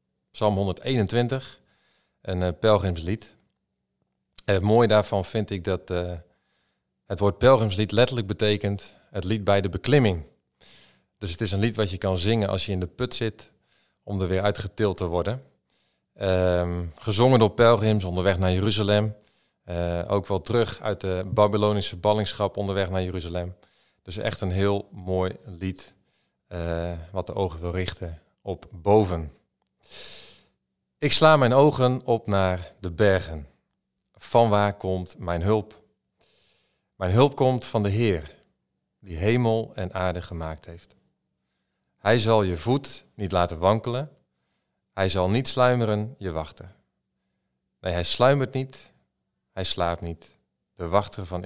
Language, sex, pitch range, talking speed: Dutch, male, 90-110 Hz, 140 wpm